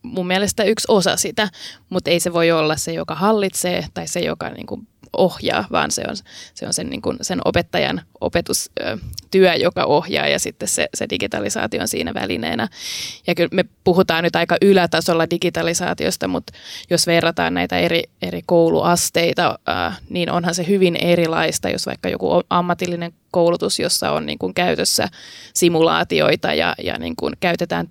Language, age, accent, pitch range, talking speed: Finnish, 20-39, native, 165-185 Hz, 135 wpm